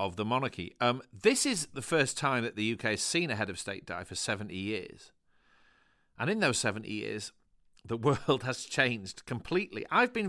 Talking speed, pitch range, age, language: 200 wpm, 110-145 Hz, 40-59, English